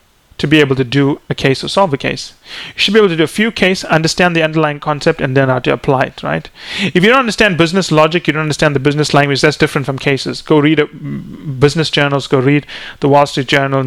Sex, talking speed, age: male, 250 wpm, 30-49